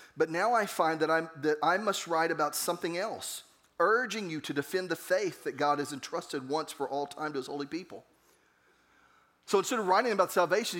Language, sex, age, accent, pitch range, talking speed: English, male, 40-59, American, 165-220 Hz, 200 wpm